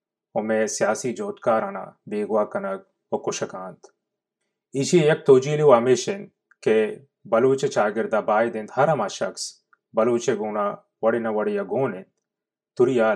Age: 30-49